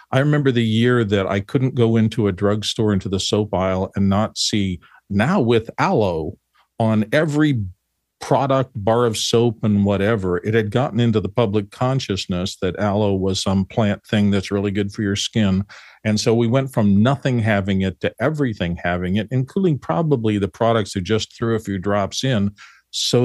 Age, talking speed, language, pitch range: 50-69, 185 wpm, English, 100-130 Hz